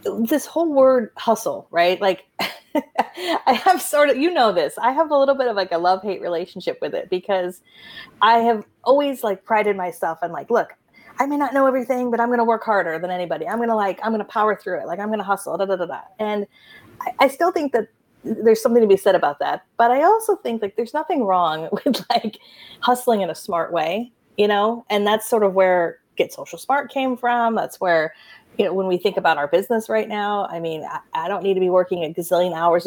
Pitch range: 190-285 Hz